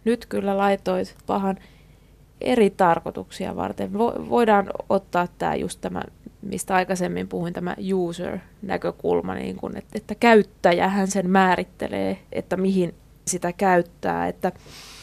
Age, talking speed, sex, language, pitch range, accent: 20-39, 125 wpm, female, Finnish, 180-210 Hz, native